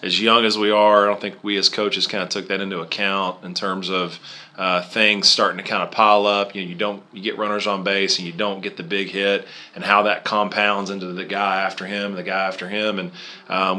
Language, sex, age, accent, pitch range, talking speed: English, male, 30-49, American, 100-110 Hz, 260 wpm